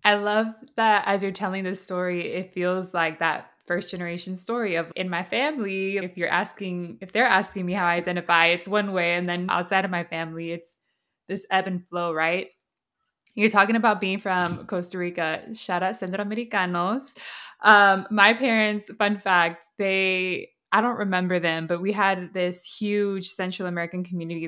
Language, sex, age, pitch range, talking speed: English, female, 20-39, 170-195 Hz, 180 wpm